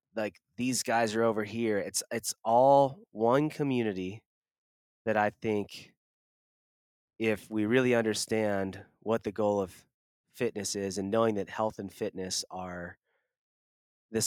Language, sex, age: English, male, 20-39